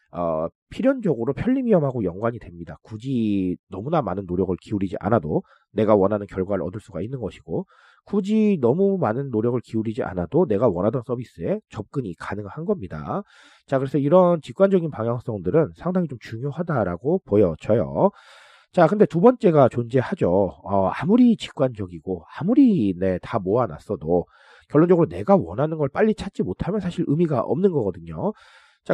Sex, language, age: male, Korean, 40-59